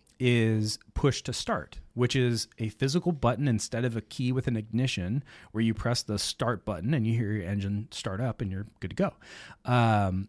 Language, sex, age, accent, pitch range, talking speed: English, male, 30-49, American, 110-135 Hz, 205 wpm